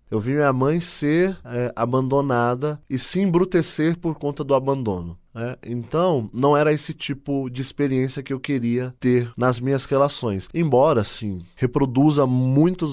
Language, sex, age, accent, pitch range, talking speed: Portuguese, male, 20-39, Brazilian, 115-145 Hz, 155 wpm